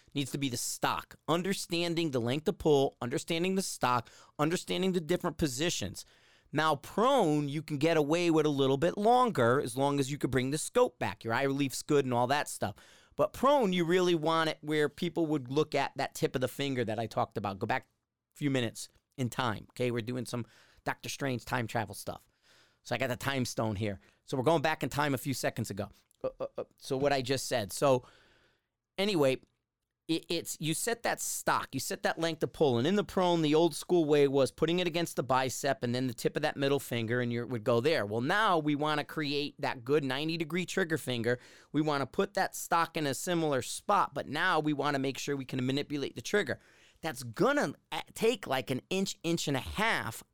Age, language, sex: 30-49, English, male